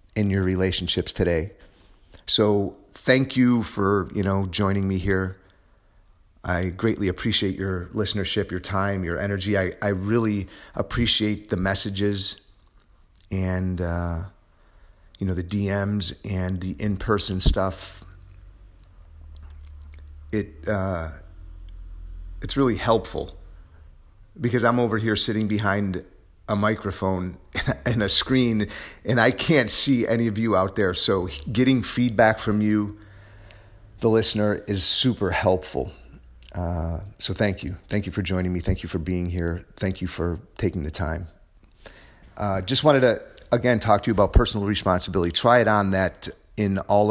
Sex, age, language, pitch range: male, 30-49, English, 85-105 Hz